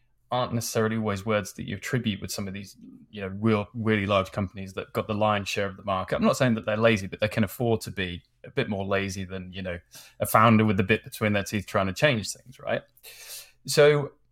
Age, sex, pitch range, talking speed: 10-29, male, 100-120 Hz, 245 wpm